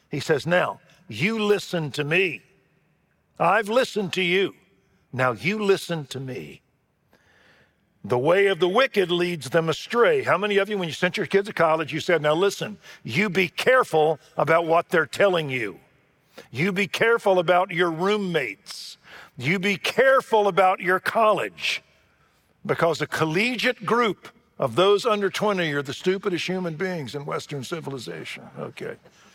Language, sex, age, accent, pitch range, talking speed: English, male, 50-69, American, 150-200 Hz, 155 wpm